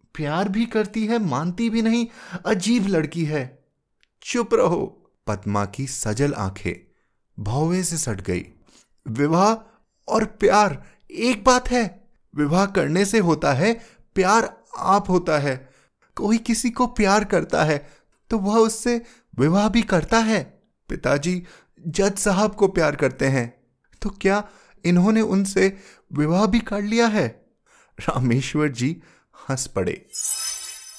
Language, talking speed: Hindi, 130 wpm